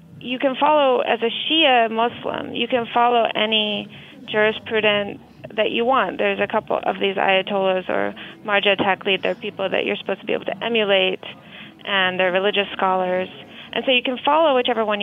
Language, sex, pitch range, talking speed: English, female, 200-235 Hz, 180 wpm